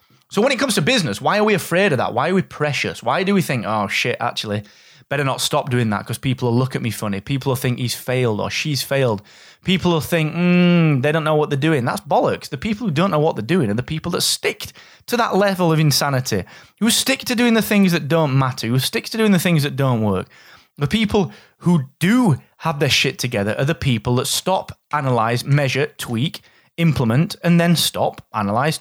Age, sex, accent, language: 20-39, male, British, English